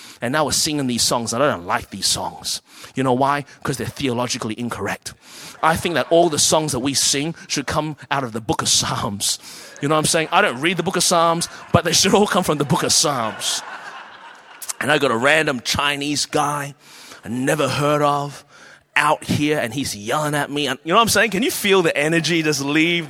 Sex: male